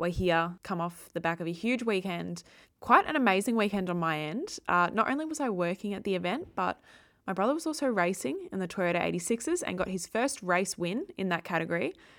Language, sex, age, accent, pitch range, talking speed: English, female, 20-39, Australian, 165-195 Hz, 220 wpm